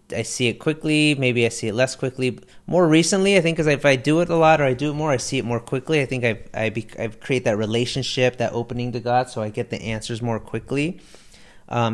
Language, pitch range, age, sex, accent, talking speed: English, 115-130 Hz, 30-49, male, American, 255 wpm